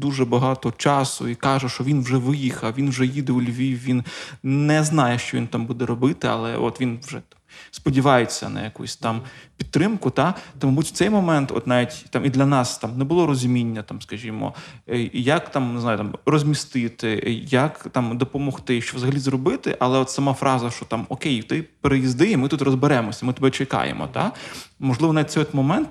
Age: 20-39